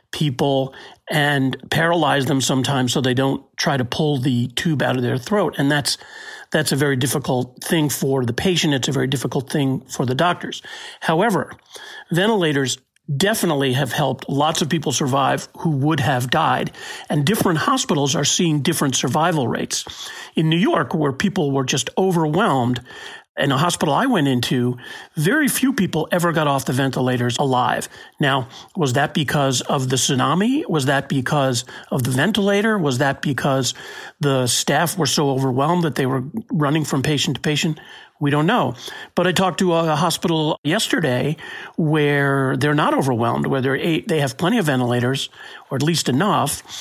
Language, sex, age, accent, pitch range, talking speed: English, male, 40-59, American, 135-170 Hz, 170 wpm